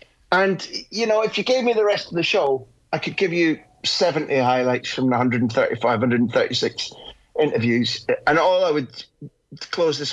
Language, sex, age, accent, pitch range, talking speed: English, male, 30-49, British, 125-175 Hz, 170 wpm